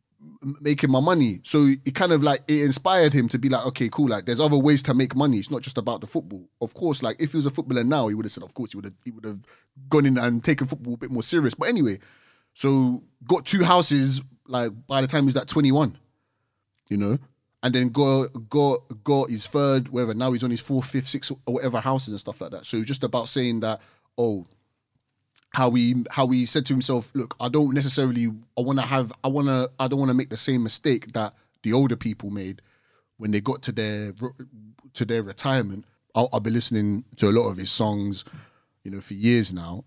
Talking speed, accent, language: 235 wpm, British, English